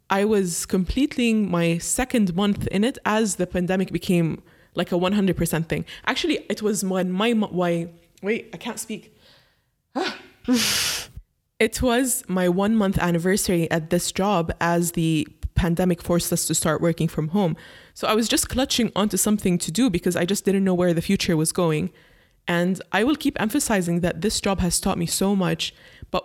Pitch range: 170-205 Hz